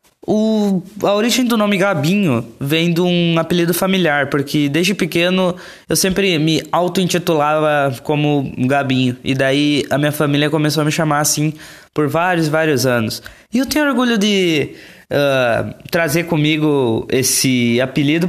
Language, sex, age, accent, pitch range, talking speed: Portuguese, male, 20-39, Brazilian, 130-190 Hz, 140 wpm